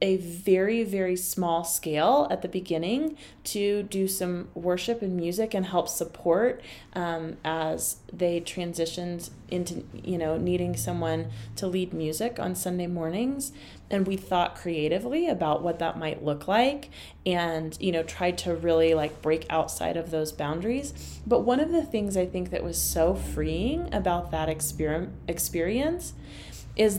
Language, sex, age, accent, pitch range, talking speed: English, female, 30-49, American, 170-230 Hz, 155 wpm